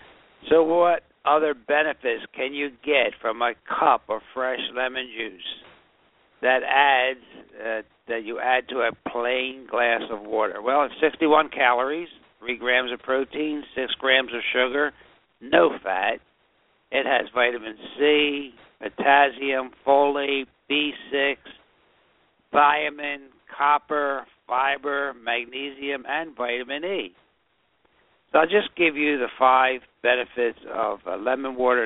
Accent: American